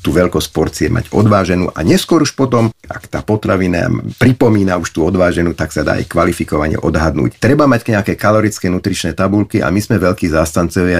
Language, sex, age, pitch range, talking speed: Slovak, male, 50-69, 85-105 Hz, 180 wpm